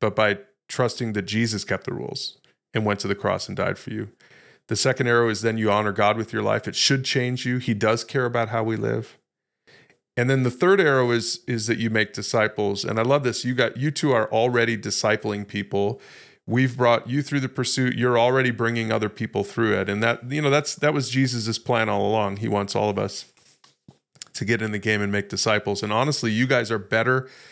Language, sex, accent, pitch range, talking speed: English, male, American, 110-130 Hz, 230 wpm